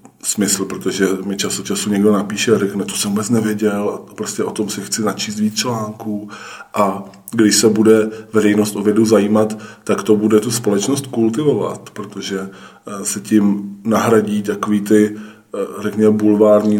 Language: Czech